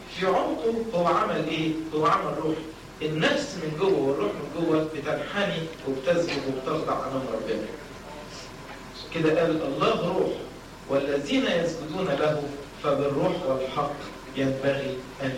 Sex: male